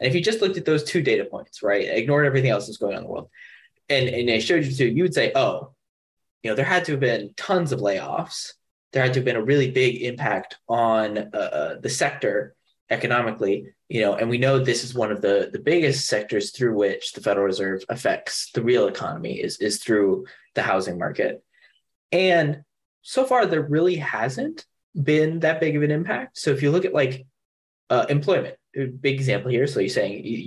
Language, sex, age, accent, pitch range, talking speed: English, male, 20-39, American, 125-160 Hz, 215 wpm